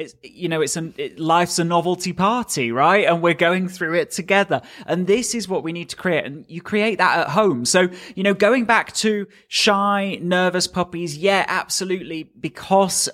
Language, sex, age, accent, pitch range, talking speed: English, male, 30-49, British, 150-185 Hz, 195 wpm